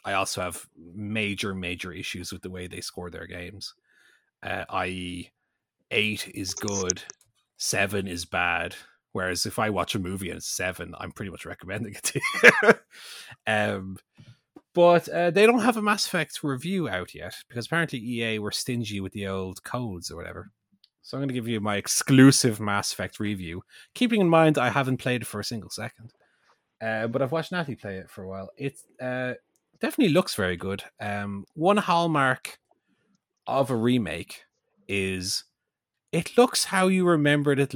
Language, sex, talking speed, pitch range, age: English, male, 175 wpm, 100-145 Hz, 30-49